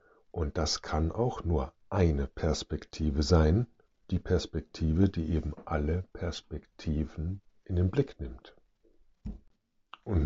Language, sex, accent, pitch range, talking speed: German, male, German, 80-110 Hz, 110 wpm